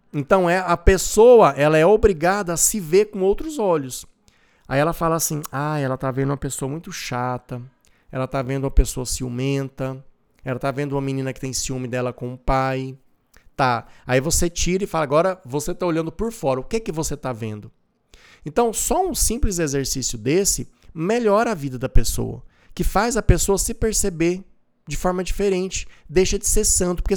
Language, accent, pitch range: Portuguese, Brazilian, 130-185 Hz